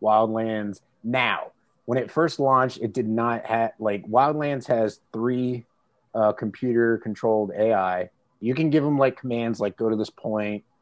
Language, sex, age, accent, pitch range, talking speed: English, male, 30-49, American, 100-125 Hz, 160 wpm